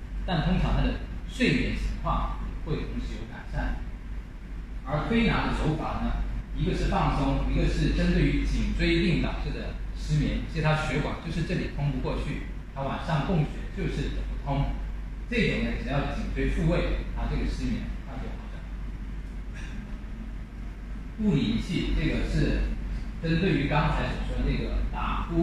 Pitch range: 120-170 Hz